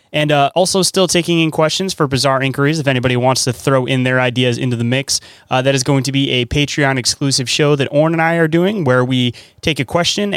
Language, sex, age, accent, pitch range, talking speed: English, male, 20-39, American, 130-160 Hz, 235 wpm